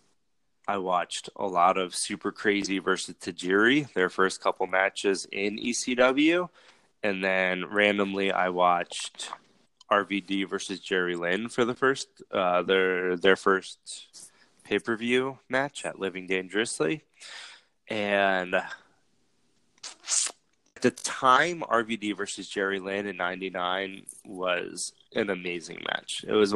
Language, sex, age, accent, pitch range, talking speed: English, male, 20-39, American, 95-110 Hz, 115 wpm